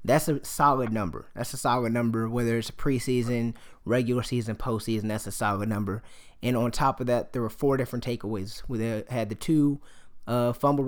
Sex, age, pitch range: male, 20-39, 115-140 Hz